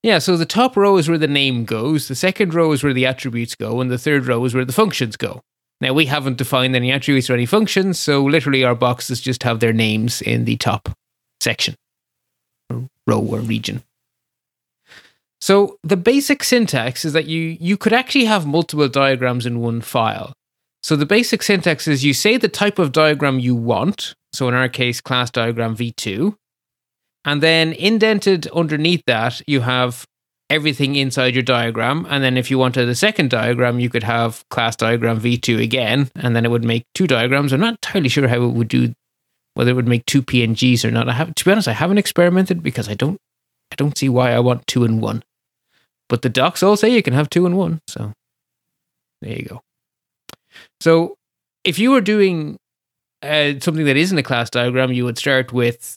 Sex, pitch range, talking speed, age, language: male, 120-170 Hz, 200 wpm, 20-39, English